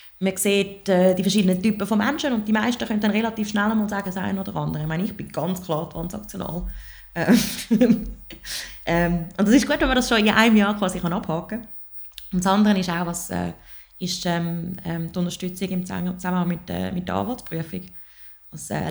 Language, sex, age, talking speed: German, female, 20-39, 200 wpm